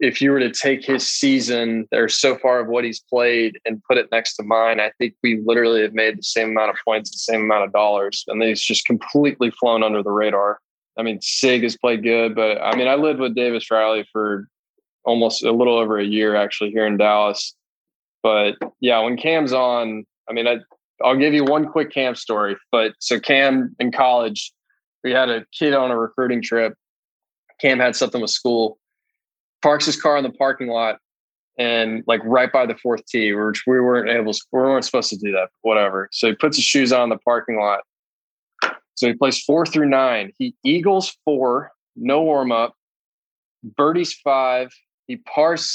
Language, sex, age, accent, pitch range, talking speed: English, male, 20-39, American, 115-145 Hz, 200 wpm